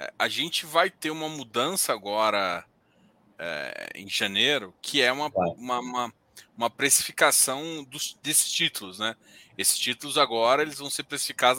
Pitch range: 140-200 Hz